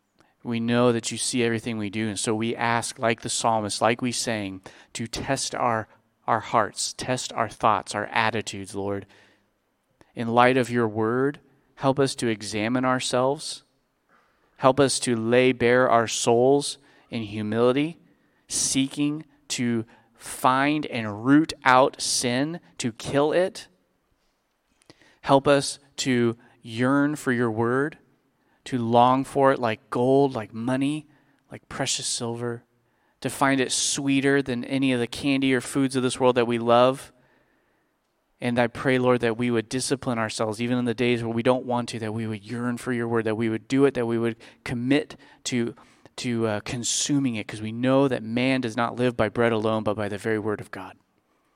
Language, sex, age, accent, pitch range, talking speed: English, male, 30-49, American, 115-130 Hz, 175 wpm